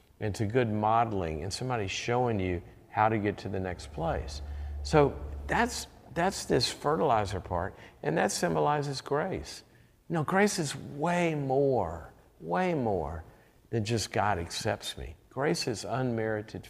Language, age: English, 50-69